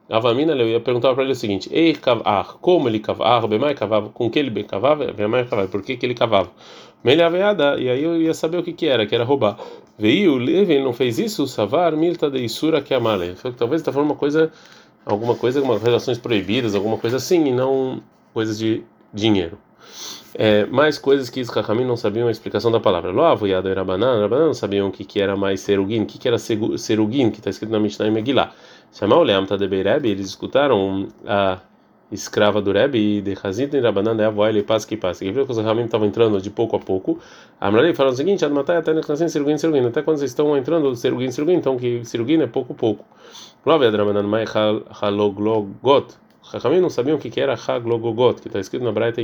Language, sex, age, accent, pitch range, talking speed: Portuguese, male, 30-49, Brazilian, 105-140 Hz, 210 wpm